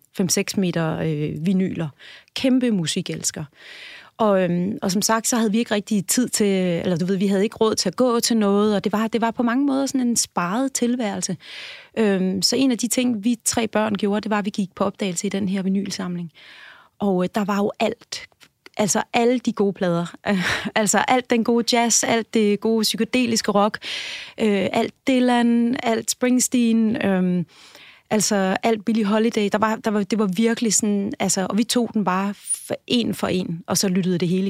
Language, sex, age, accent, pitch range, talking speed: Danish, female, 30-49, native, 190-235 Hz, 205 wpm